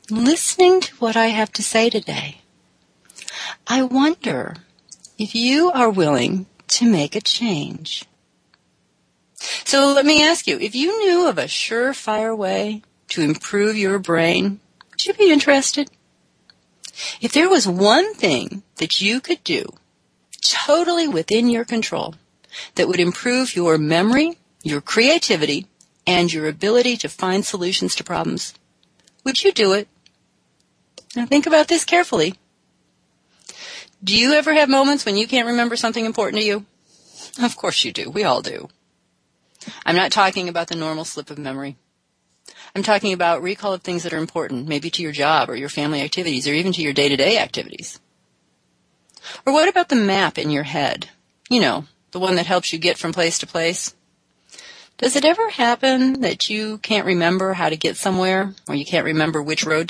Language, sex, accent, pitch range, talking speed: English, female, American, 170-265 Hz, 165 wpm